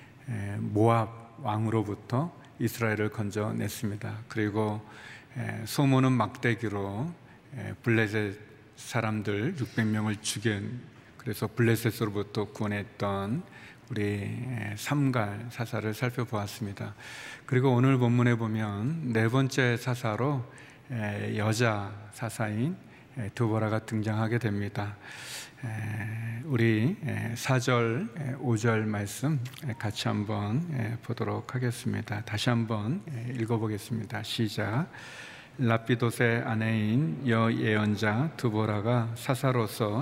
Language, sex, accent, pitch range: Korean, male, native, 110-125 Hz